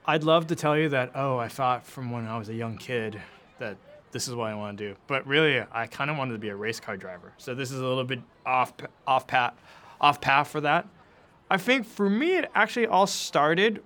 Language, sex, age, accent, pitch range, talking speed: English, male, 20-39, American, 125-175 Hz, 245 wpm